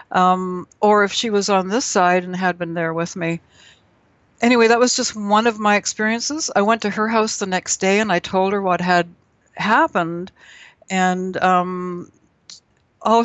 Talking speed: 180 wpm